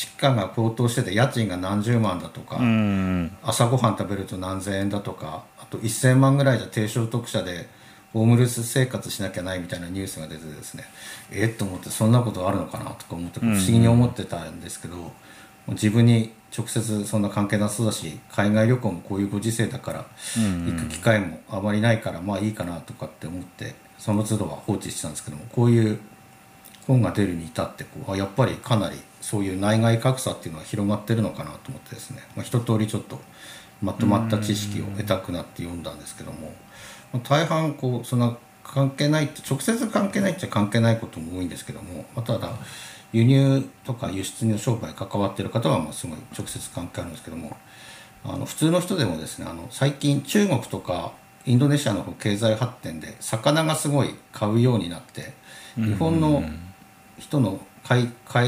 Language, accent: Japanese, native